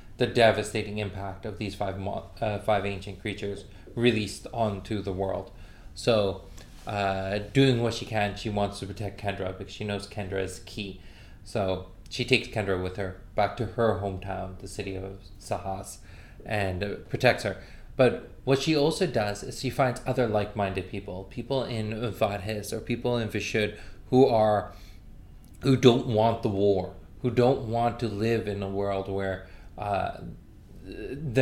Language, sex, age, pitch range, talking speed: English, male, 20-39, 95-120 Hz, 160 wpm